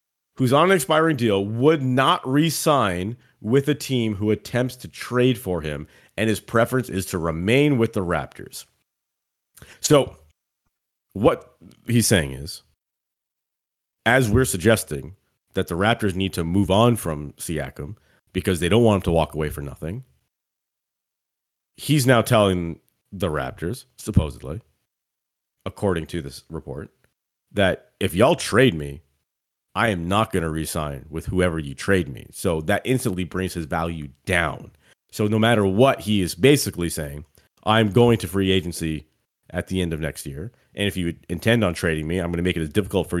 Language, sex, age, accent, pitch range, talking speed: English, male, 40-59, American, 85-125 Hz, 165 wpm